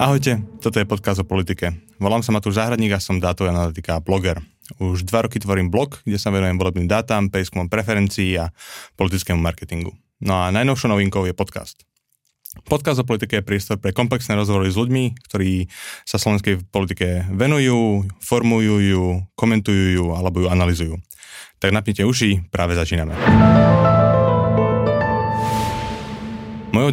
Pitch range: 95-110 Hz